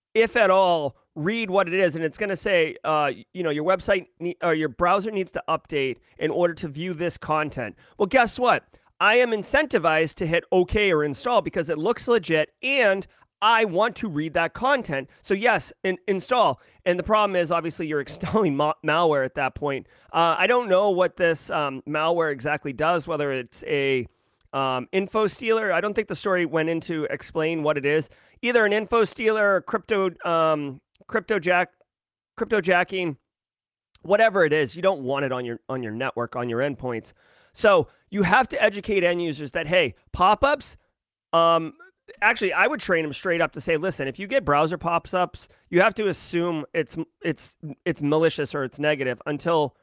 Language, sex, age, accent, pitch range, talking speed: English, male, 30-49, American, 145-195 Hz, 190 wpm